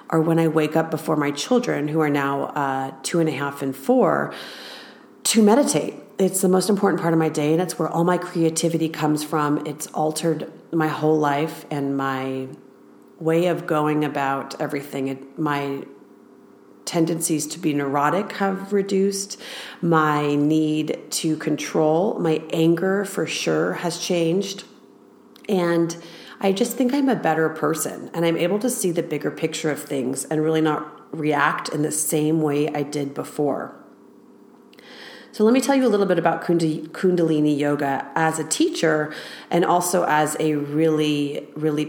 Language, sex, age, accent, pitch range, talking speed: English, female, 40-59, American, 150-180 Hz, 165 wpm